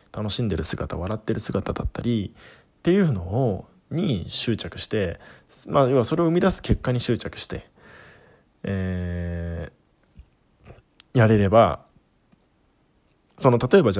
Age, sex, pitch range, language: 20-39, male, 90-125 Hz, Japanese